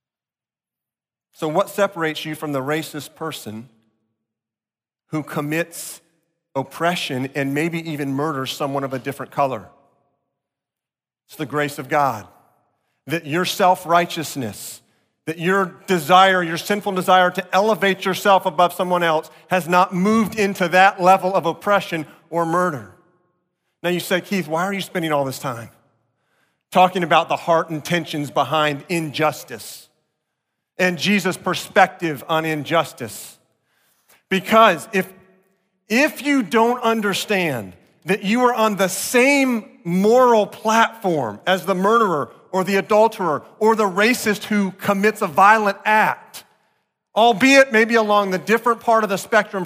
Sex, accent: male, American